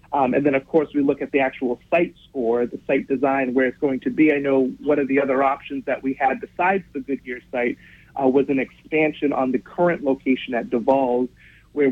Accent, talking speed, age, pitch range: American, 225 wpm, 40-59, 130-150 Hz